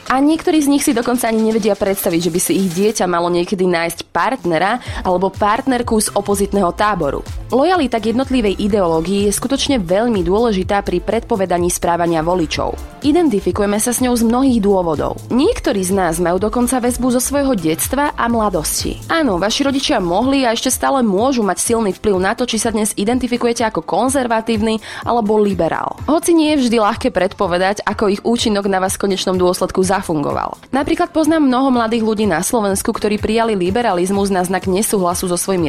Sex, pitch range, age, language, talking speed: female, 190-255 Hz, 20-39, Slovak, 175 wpm